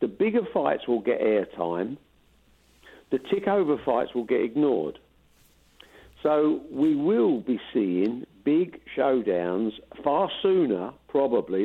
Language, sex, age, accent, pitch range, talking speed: English, male, 50-69, British, 110-150 Hz, 115 wpm